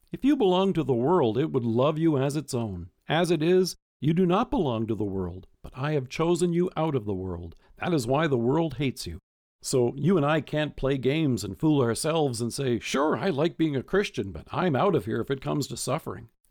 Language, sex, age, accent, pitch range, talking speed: English, male, 50-69, American, 125-180 Hz, 245 wpm